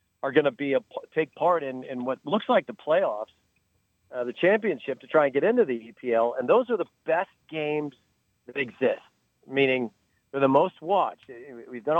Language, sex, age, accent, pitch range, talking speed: English, male, 40-59, American, 120-155 Hz, 195 wpm